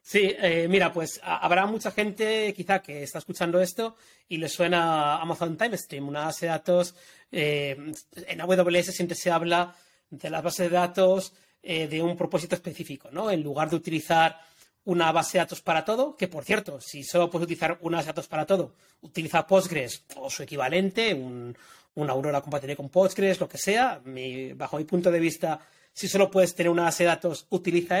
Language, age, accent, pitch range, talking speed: Spanish, 30-49, Spanish, 165-190 Hz, 190 wpm